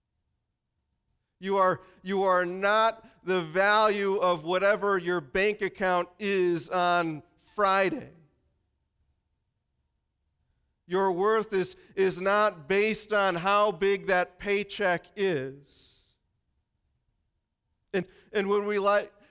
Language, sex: English, male